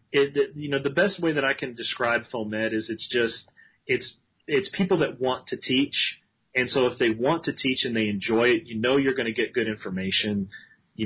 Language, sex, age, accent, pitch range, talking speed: English, male, 30-49, American, 110-130 Hz, 220 wpm